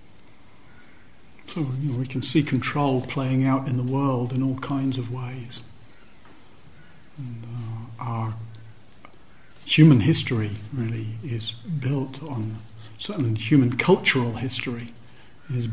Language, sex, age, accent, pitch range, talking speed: English, male, 50-69, British, 115-140 Hz, 105 wpm